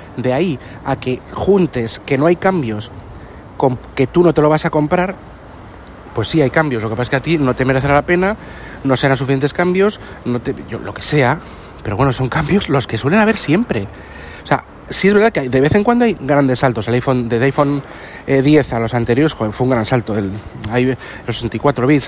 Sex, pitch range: male, 120-160 Hz